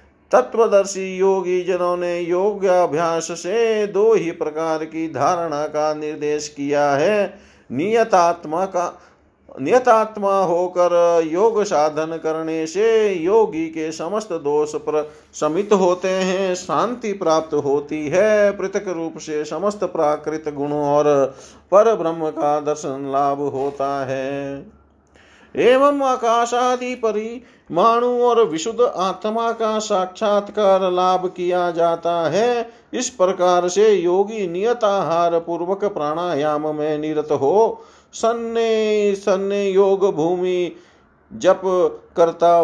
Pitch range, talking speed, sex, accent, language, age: 160-210 Hz, 110 wpm, male, native, Hindi, 50-69